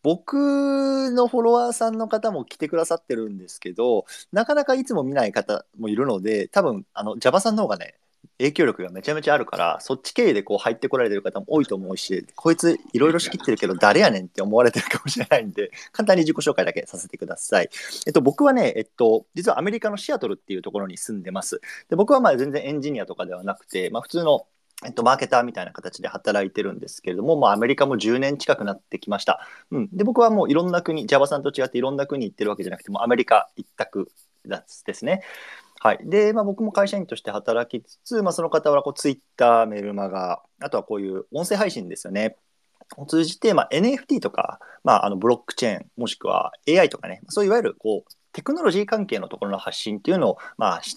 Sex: male